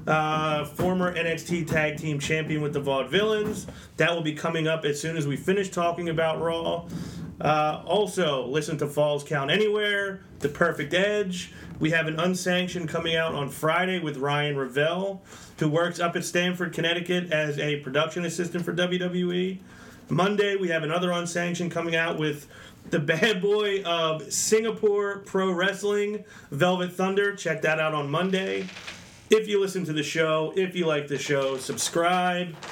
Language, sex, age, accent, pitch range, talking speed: English, male, 30-49, American, 155-180 Hz, 165 wpm